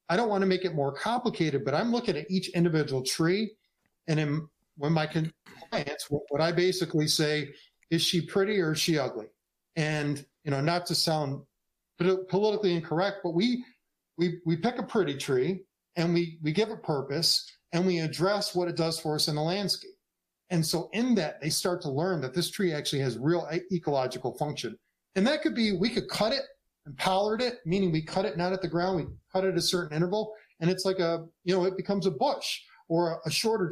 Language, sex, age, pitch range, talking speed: English, male, 40-59, 150-190 Hz, 210 wpm